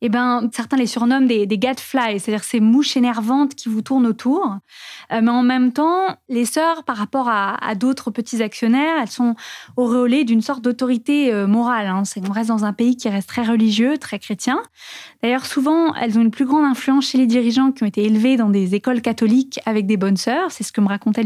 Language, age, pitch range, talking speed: French, 20-39, 215-265 Hz, 225 wpm